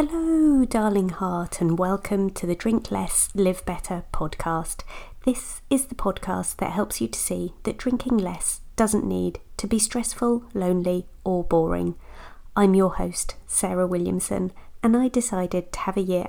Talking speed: 160 wpm